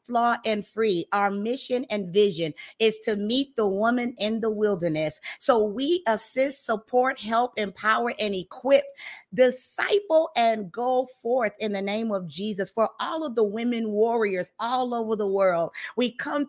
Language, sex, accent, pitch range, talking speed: English, female, American, 210-250 Hz, 160 wpm